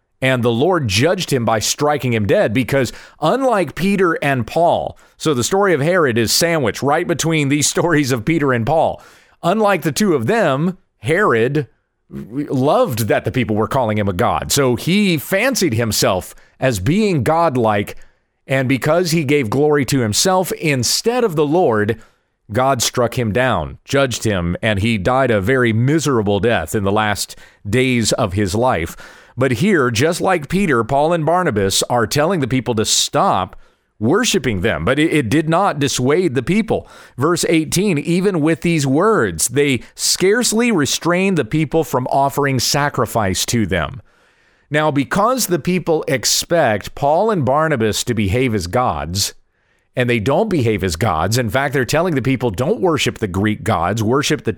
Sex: male